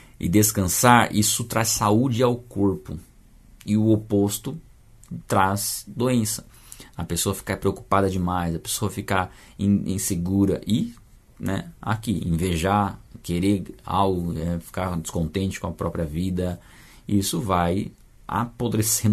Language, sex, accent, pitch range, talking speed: Portuguese, male, Brazilian, 90-110 Hz, 115 wpm